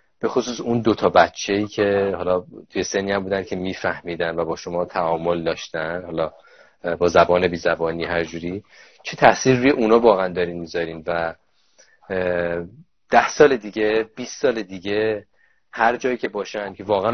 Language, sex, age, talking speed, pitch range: Persian, male, 30-49, 150 wpm, 95-115 Hz